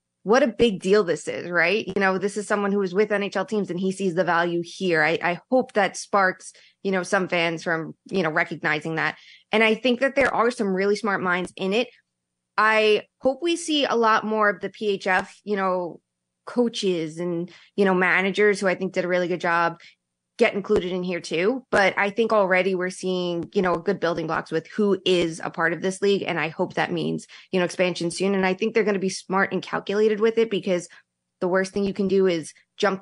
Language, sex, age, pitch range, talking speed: English, female, 20-39, 175-205 Hz, 235 wpm